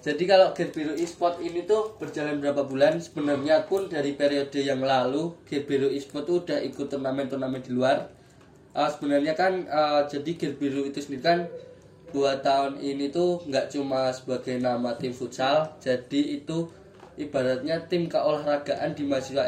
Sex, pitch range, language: male, 130-150 Hz, Indonesian